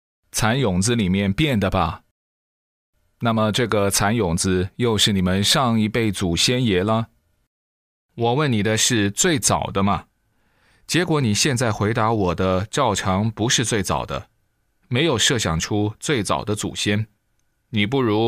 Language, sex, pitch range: Chinese, male, 95-120 Hz